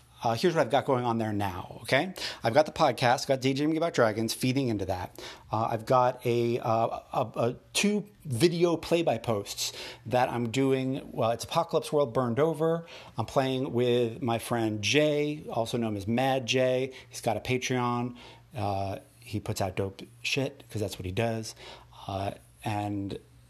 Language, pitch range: English, 110-130 Hz